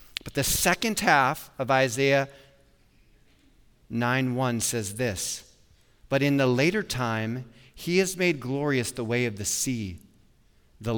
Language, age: English, 30-49